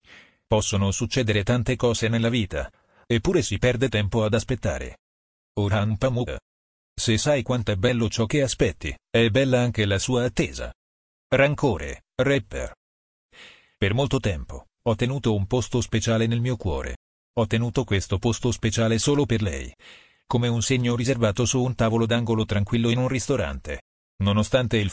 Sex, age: male, 40-59